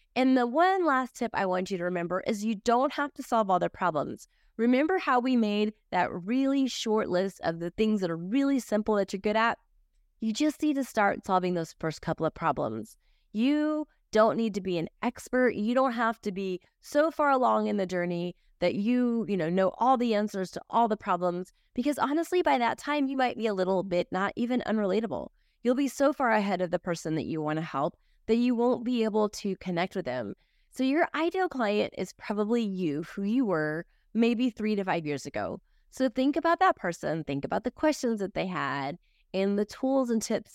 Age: 20-39